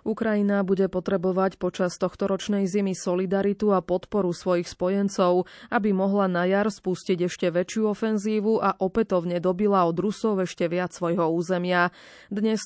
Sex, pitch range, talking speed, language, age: female, 175-205 Hz, 140 wpm, Slovak, 20-39